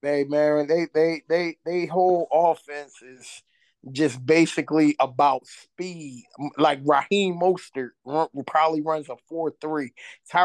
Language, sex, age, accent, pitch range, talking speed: English, male, 20-39, American, 165-225 Hz, 130 wpm